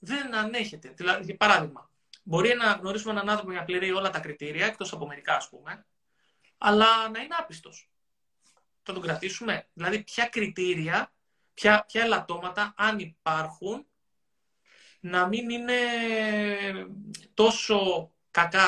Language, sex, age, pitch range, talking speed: Greek, male, 20-39, 170-210 Hz, 125 wpm